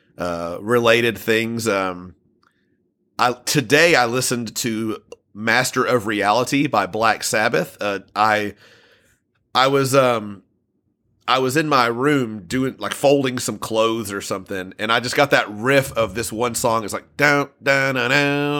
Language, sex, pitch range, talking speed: English, male, 105-130 Hz, 140 wpm